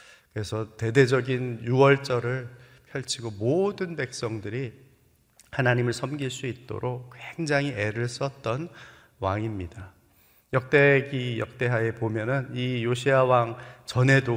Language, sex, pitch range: Korean, male, 110-135 Hz